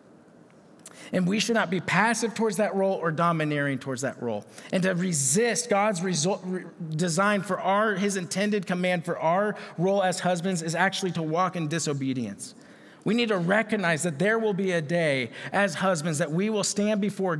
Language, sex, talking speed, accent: English, male, 180 wpm, American